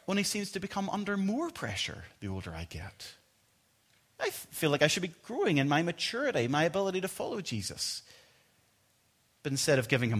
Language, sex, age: English, male, 30-49